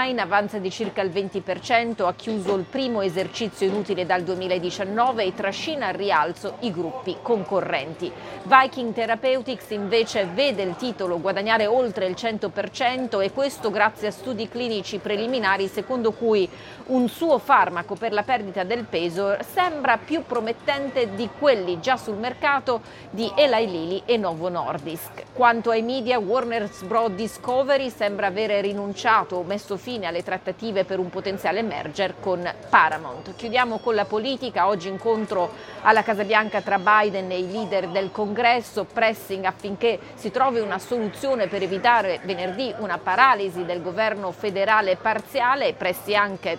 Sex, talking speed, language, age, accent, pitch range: female, 145 wpm, Italian, 40-59, native, 190-235 Hz